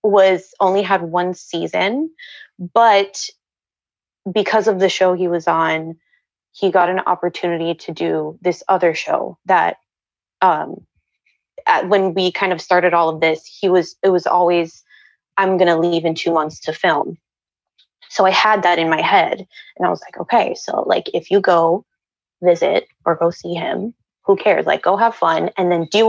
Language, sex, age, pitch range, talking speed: English, female, 20-39, 170-200 Hz, 175 wpm